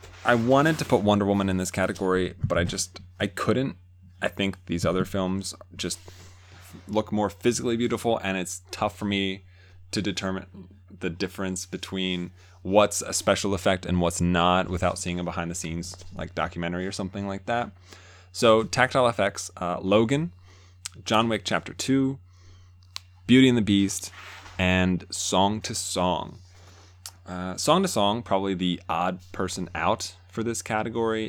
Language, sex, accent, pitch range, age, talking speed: English, male, American, 90-105 Hz, 20-39, 155 wpm